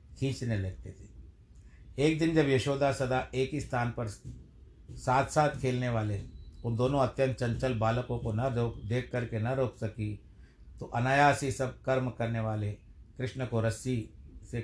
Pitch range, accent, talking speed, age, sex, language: 105-130 Hz, native, 160 wpm, 60-79, male, Hindi